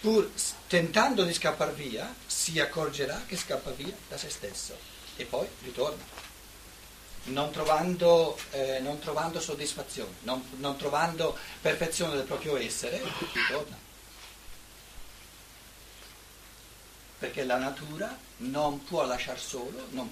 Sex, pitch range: male, 125-160 Hz